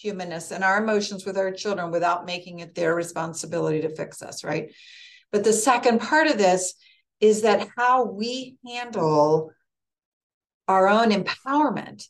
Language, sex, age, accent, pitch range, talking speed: English, female, 40-59, American, 180-240 Hz, 150 wpm